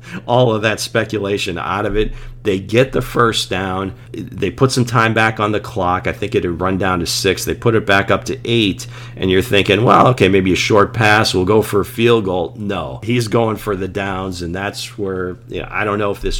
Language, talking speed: English, 240 wpm